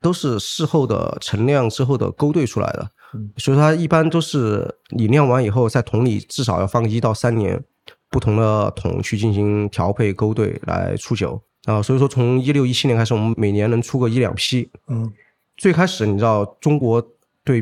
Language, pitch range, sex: Chinese, 105-135 Hz, male